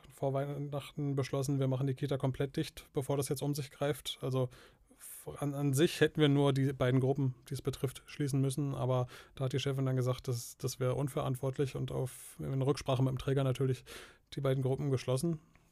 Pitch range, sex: 130-150 Hz, male